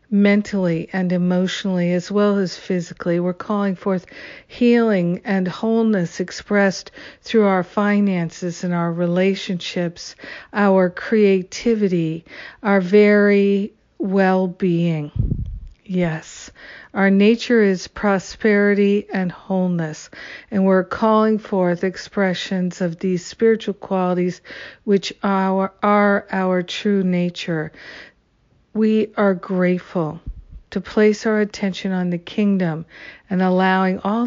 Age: 50-69